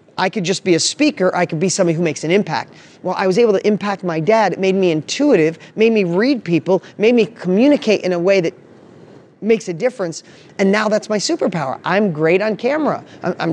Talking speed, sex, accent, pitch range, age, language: 220 wpm, male, American, 170-220 Hz, 30-49, English